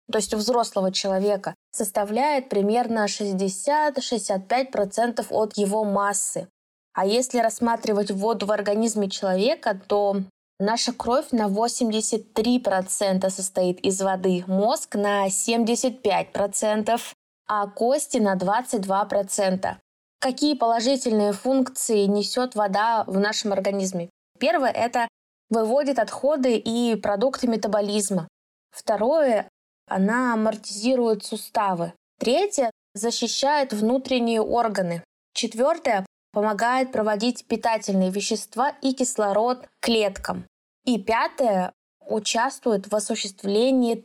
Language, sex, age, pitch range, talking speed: Russian, female, 20-39, 200-240 Hz, 95 wpm